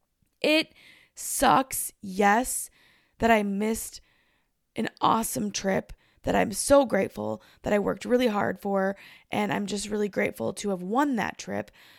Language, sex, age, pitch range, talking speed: English, female, 10-29, 200-250 Hz, 145 wpm